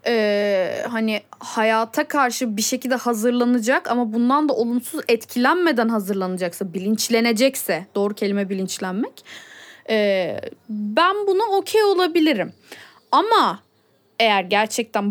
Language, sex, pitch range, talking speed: Turkish, female, 210-320 Hz, 100 wpm